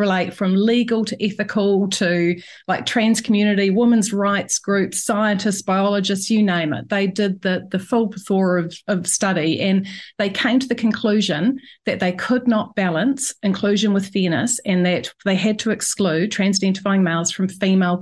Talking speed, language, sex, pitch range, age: 165 wpm, English, female, 190-235 Hz, 40-59